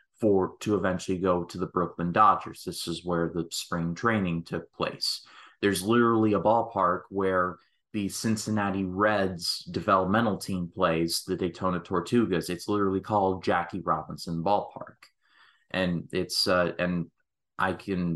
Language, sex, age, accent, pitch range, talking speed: English, male, 30-49, American, 85-105 Hz, 140 wpm